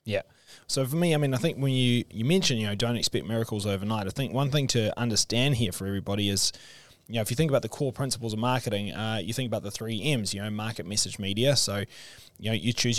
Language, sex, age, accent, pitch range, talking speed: English, male, 20-39, Australian, 110-135 Hz, 260 wpm